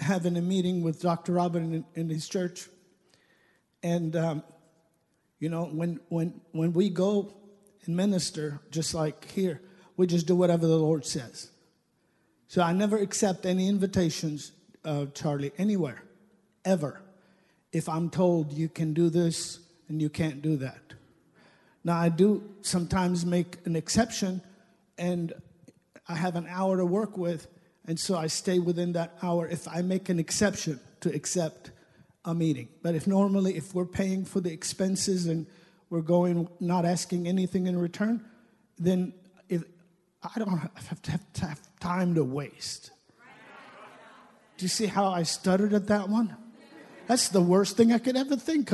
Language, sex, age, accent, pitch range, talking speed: English, male, 50-69, American, 165-195 Hz, 160 wpm